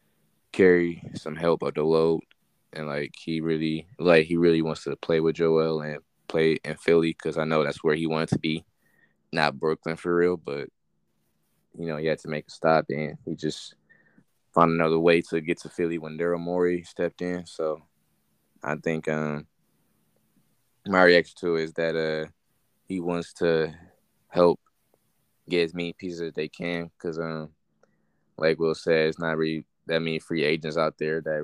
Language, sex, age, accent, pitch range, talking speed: English, male, 20-39, American, 75-85 Hz, 185 wpm